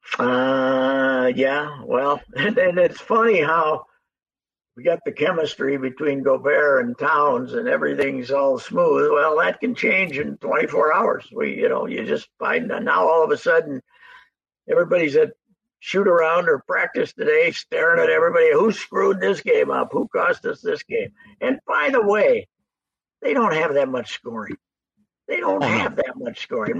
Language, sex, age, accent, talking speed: English, male, 60-79, American, 165 wpm